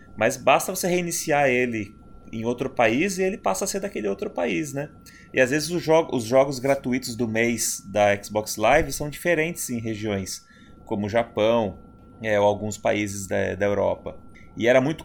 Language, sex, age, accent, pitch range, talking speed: Portuguese, male, 20-39, Brazilian, 110-150 Hz, 185 wpm